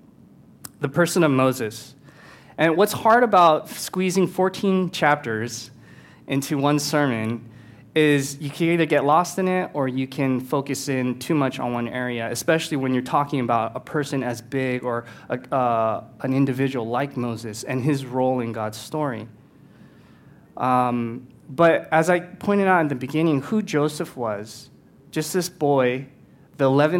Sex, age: male, 20-39